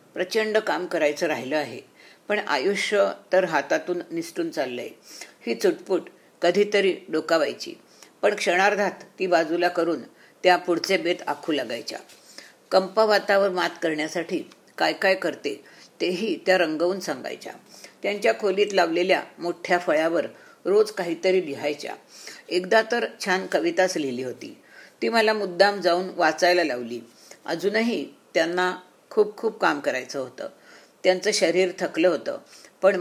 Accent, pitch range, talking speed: native, 175-210 Hz, 125 wpm